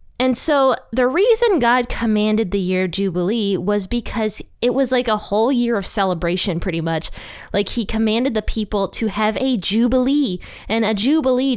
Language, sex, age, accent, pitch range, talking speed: English, female, 20-39, American, 190-240 Hz, 170 wpm